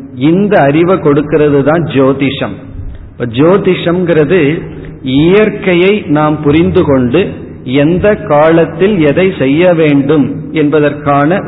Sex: male